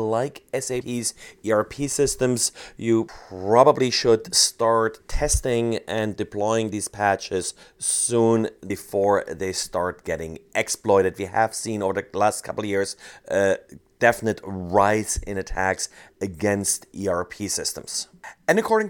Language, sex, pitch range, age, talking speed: English, male, 110-135 Hz, 30-49, 125 wpm